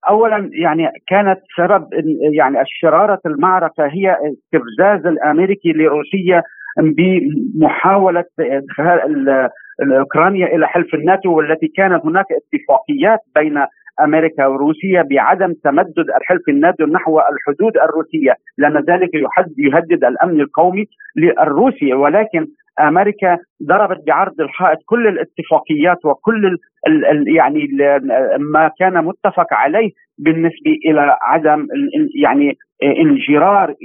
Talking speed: 100 wpm